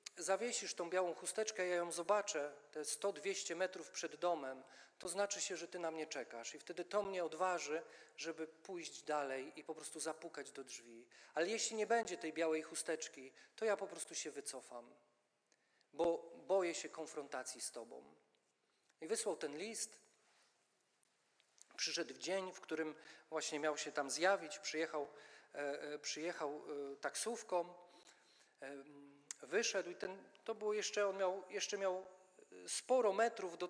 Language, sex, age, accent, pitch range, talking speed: Polish, male, 40-59, native, 155-205 Hz, 150 wpm